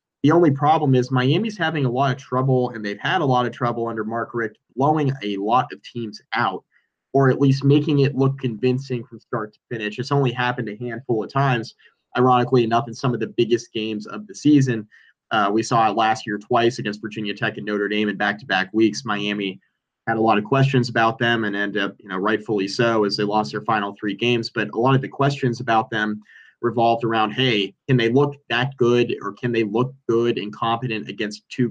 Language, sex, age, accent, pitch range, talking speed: English, male, 20-39, American, 110-135 Hz, 225 wpm